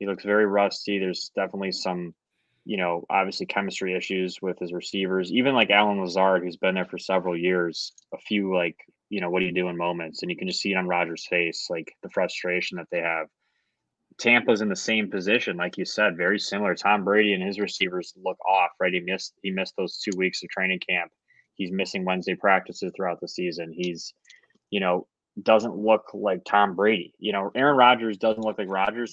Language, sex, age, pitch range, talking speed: English, male, 20-39, 90-110 Hz, 210 wpm